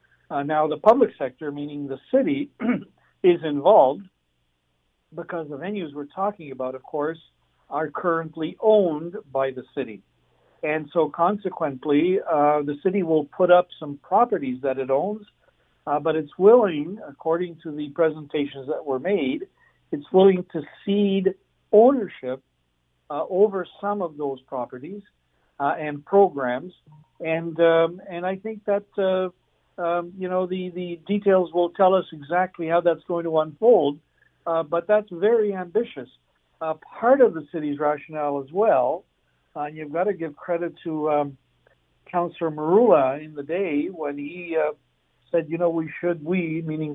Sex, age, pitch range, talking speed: male, 60-79, 145-185 Hz, 155 wpm